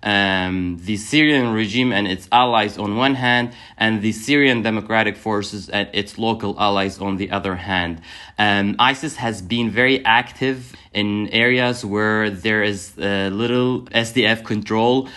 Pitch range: 100-115 Hz